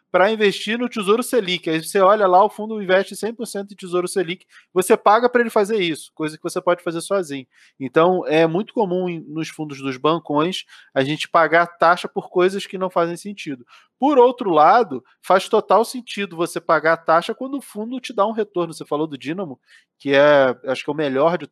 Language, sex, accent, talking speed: Portuguese, male, Brazilian, 210 wpm